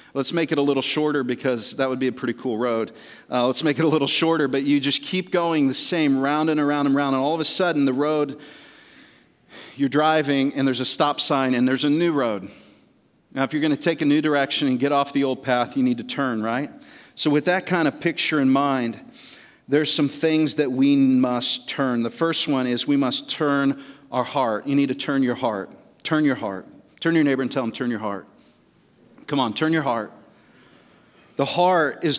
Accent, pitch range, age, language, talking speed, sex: American, 140-185 Hz, 40-59, English, 225 wpm, male